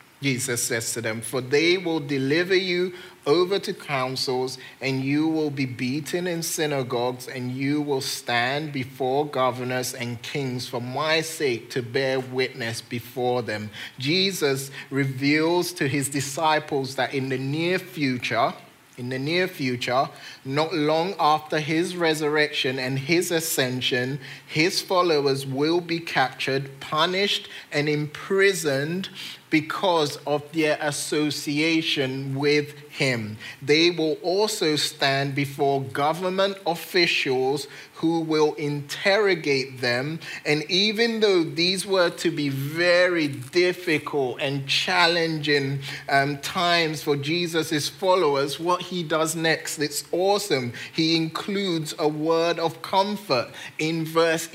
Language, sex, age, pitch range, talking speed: English, male, 30-49, 135-170 Hz, 125 wpm